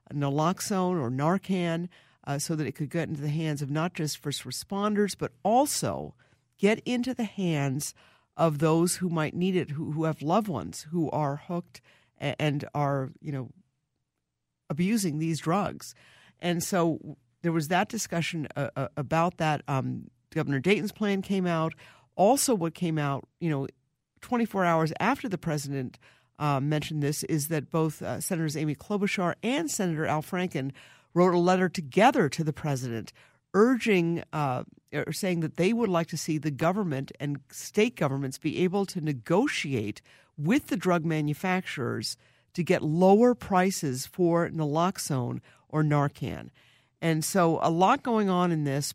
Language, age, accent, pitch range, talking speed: English, 50-69, American, 145-185 Hz, 160 wpm